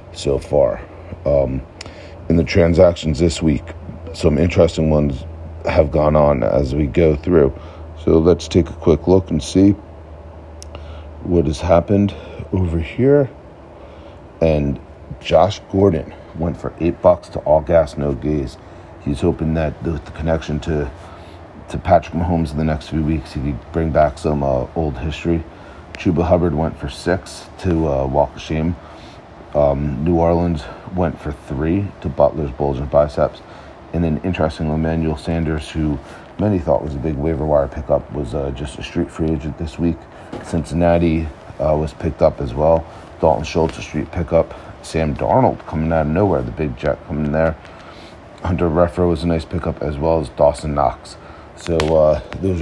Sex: male